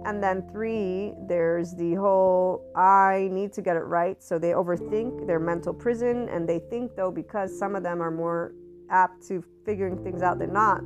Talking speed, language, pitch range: 195 wpm, English, 170-195 Hz